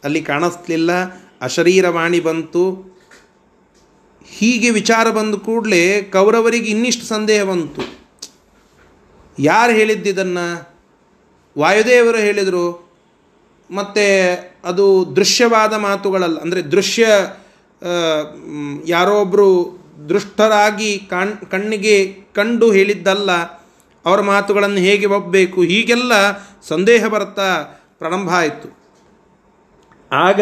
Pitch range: 160-205 Hz